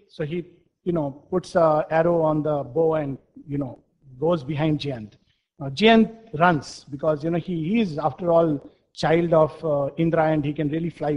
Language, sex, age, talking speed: English, male, 50-69, 195 wpm